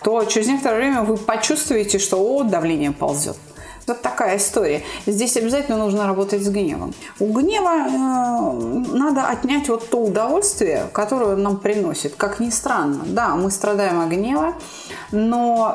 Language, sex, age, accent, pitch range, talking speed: Russian, female, 30-49, native, 175-240 Hz, 150 wpm